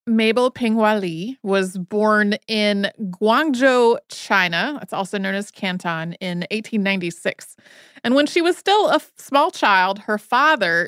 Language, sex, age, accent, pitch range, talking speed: English, female, 30-49, American, 195-245 Hz, 140 wpm